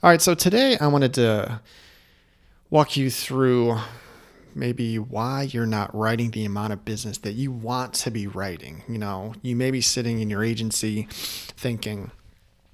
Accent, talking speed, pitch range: American, 165 wpm, 105-125 Hz